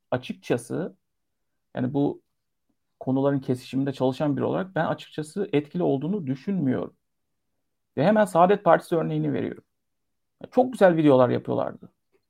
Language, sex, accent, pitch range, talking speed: Turkish, male, native, 135-185 Hz, 110 wpm